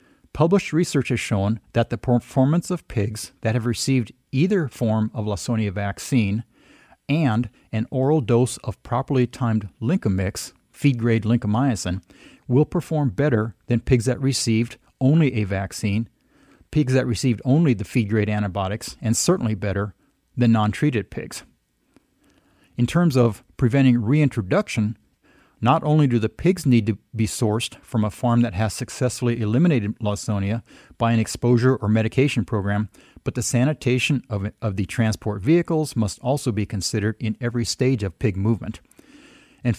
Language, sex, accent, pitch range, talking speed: English, male, American, 110-135 Hz, 145 wpm